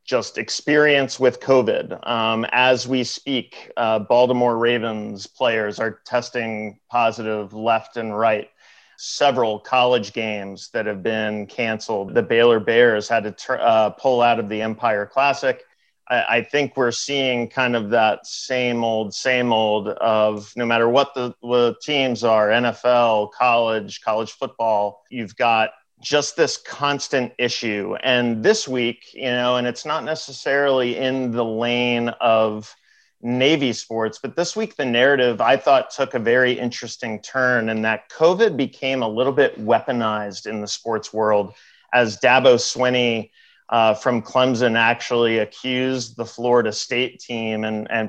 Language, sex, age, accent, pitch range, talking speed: English, male, 40-59, American, 110-125 Hz, 150 wpm